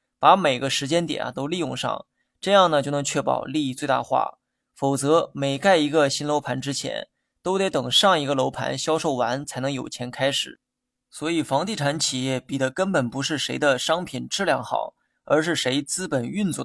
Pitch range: 135-165 Hz